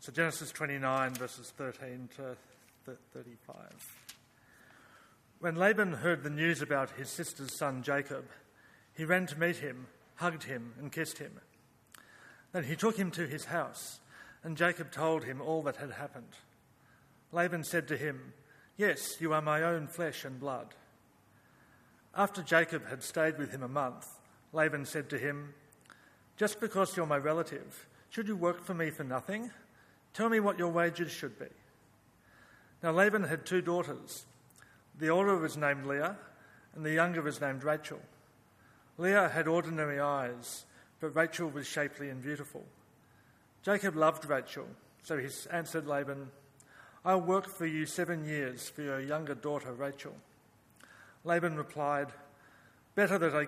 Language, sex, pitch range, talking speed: English, male, 140-170 Hz, 150 wpm